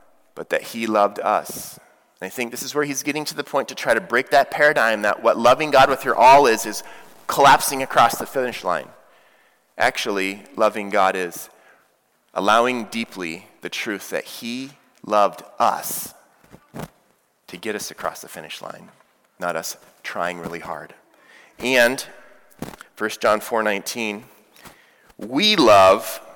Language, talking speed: English, 155 wpm